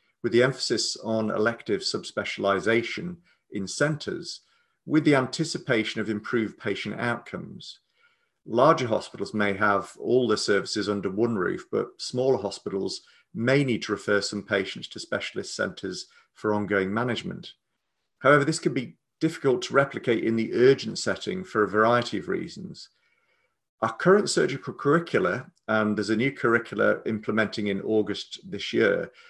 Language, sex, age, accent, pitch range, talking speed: English, male, 40-59, British, 105-130 Hz, 145 wpm